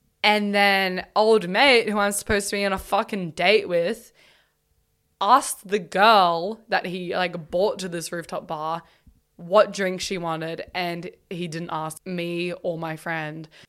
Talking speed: 160 wpm